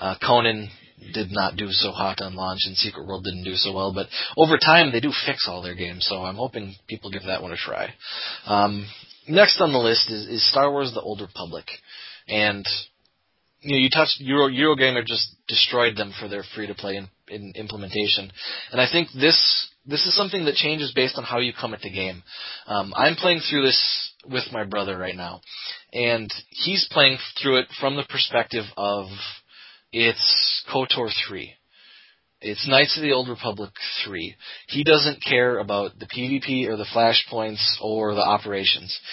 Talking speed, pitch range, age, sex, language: 185 wpm, 100-130 Hz, 20-39, male, English